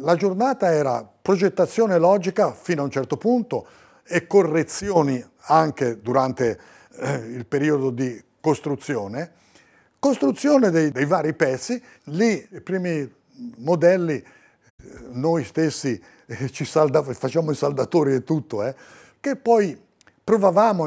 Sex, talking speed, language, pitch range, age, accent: male, 120 wpm, Italian, 130-180 Hz, 50-69, native